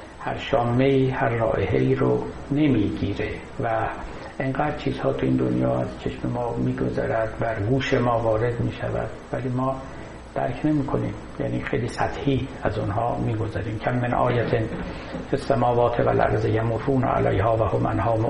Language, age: Persian, 60-79